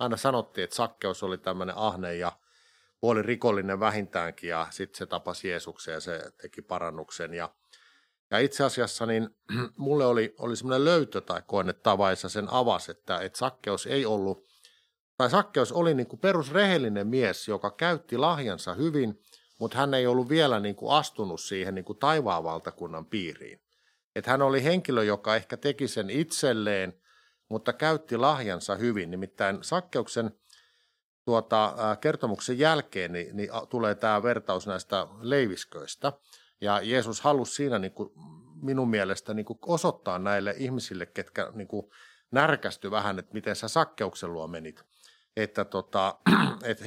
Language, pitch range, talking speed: Finnish, 95-130 Hz, 140 wpm